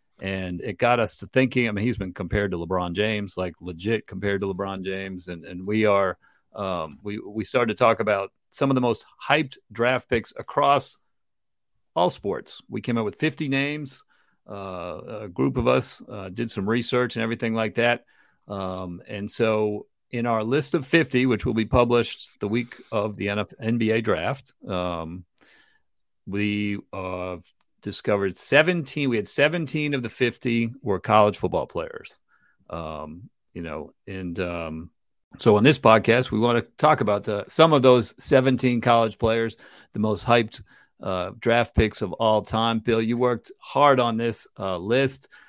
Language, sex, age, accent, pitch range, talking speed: English, male, 50-69, American, 105-125 Hz, 175 wpm